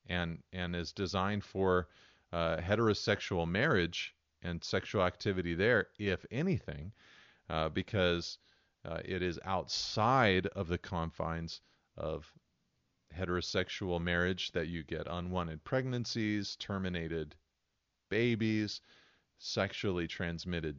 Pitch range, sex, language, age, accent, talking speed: 85-100 Hz, male, English, 30-49, American, 100 wpm